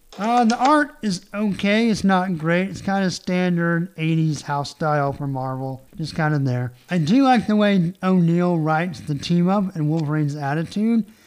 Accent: American